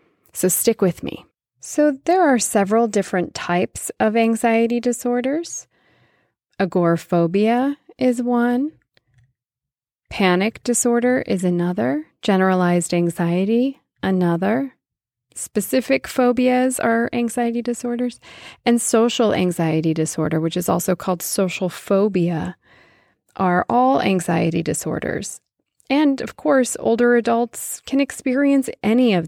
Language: English